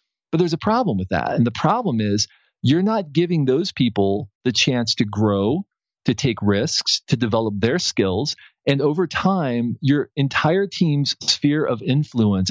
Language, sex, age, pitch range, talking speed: English, male, 40-59, 115-155 Hz, 170 wpm